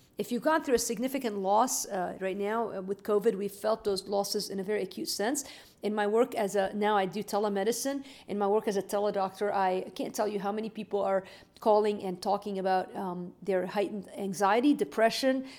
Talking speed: 210 wpm